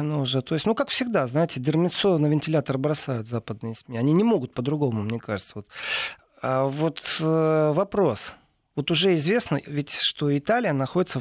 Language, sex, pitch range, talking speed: Russian, male, 130-165 Hz, 145 wpm